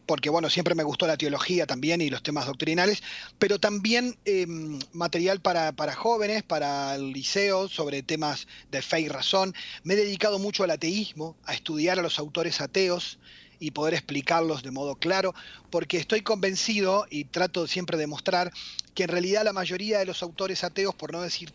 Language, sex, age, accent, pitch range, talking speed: Spanish, male, 30-49, Argentinian, 155-205 Hz, 185 wpm